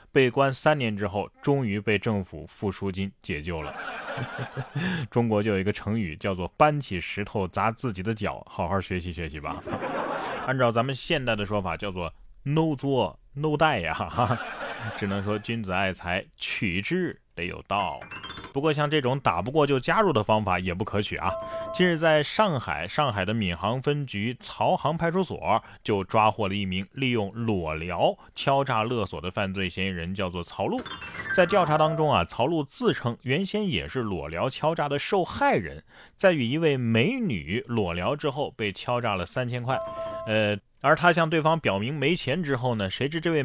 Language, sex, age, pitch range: Chinese, male, 20-39, 100-155 Hz